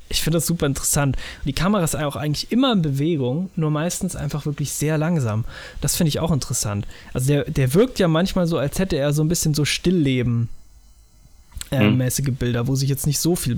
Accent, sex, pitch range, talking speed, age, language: German, male, 125-155 Hz, 210 wpm, 20-39, German